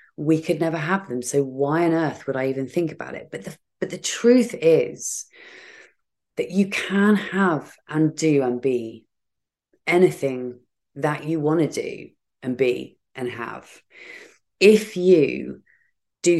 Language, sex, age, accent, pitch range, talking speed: English, female, 30-49, British, 130-170 Hz, 155 wpm